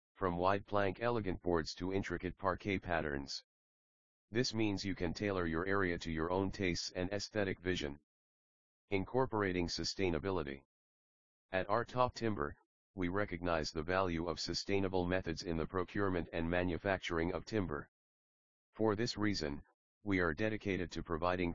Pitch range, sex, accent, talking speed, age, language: 85-100 Hz, male, American, 140 wpm, 40-59, English